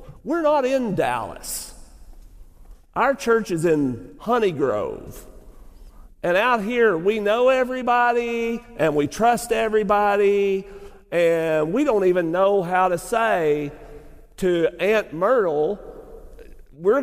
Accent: American